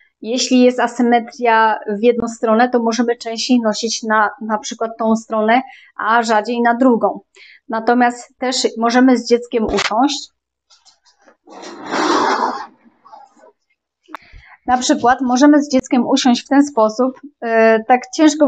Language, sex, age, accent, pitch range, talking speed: Polish, female, 20-39, native, 225-280 Hz, 115 wpm